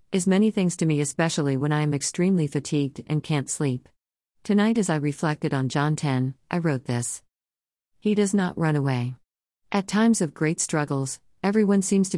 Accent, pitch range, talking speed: American, 135-170 Hz, 180 wpm